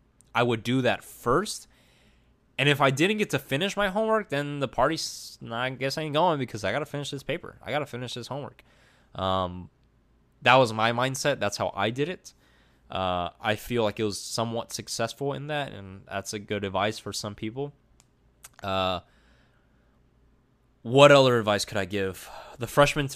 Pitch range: 105-140 Hz